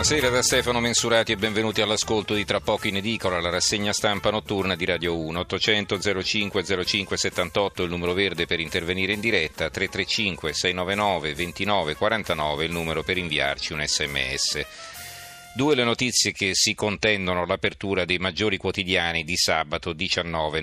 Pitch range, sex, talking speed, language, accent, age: 85-110 Hz, male, 150 wpm, Italian, native, 40-59